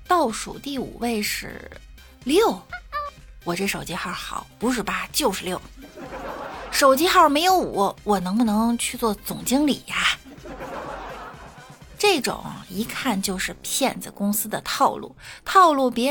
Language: Chinese